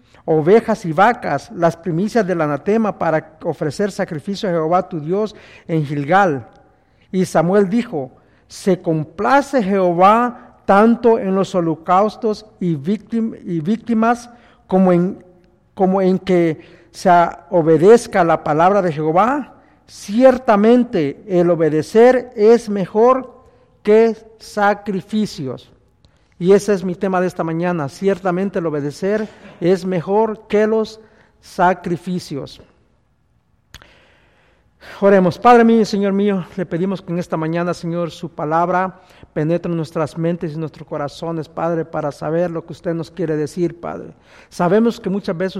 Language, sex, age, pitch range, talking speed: English, male, 50-69, 165-210 Hz, 130 wpm